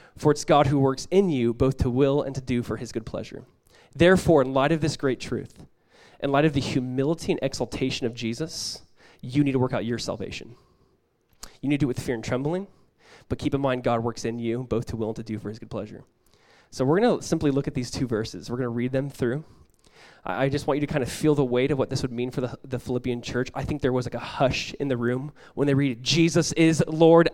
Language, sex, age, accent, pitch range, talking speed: English, male, 20-39, American, 125-165 Hz, 265 wpm